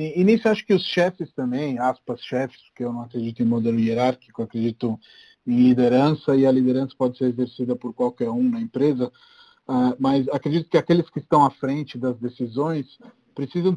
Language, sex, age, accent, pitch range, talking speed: Portuguese, male, 40-59, Brazilian, 130-185 Hz, 180 wpm